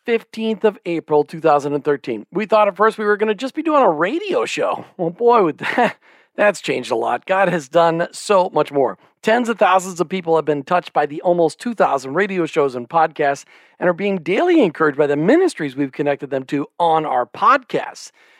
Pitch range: 160-215 Hz